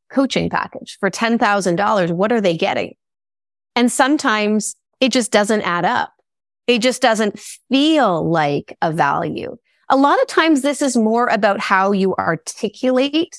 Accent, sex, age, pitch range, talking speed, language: American, female, 30-49, 185-255 Hz, 150 wpm, English